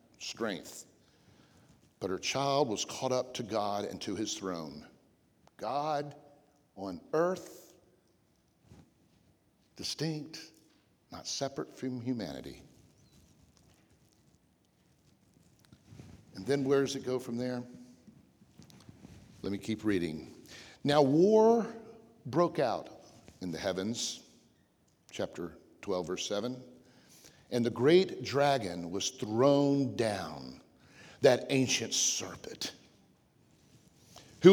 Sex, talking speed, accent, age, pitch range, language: male, 95 wpm, American, 50-69, 125-180 Hz, English